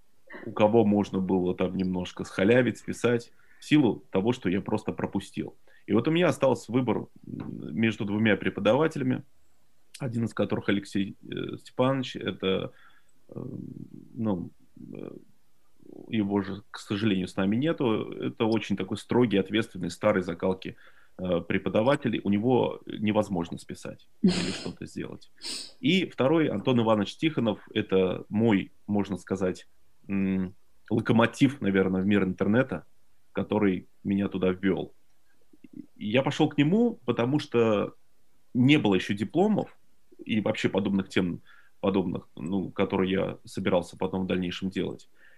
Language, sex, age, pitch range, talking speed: Russian, male, 30-49, 95-115 Hz, 125 wpm